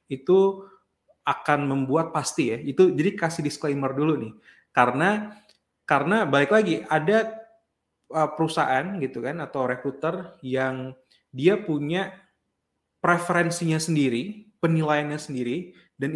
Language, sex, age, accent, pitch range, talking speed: Indonesian, male, 20-39, native, 125-165 Hz, 110 wpm